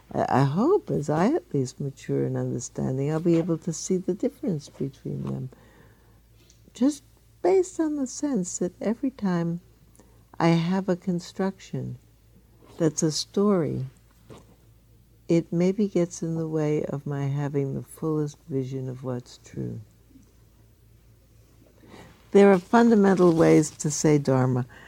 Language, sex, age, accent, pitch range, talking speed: English, female, 60-79, American, 120-165 Hz, 135 wpm